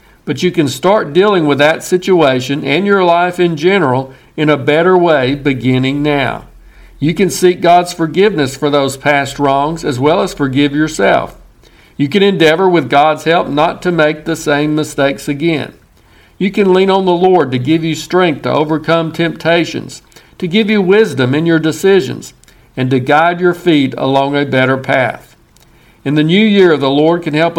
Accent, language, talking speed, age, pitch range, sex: American, English, 180 wpm, 50-69, 145-175 Hz, male